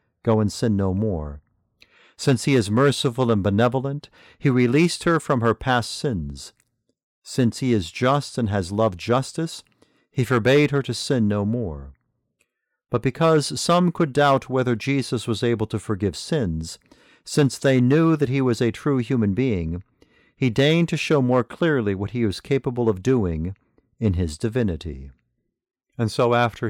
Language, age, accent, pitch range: English, 50-69, American, 105-130 Hz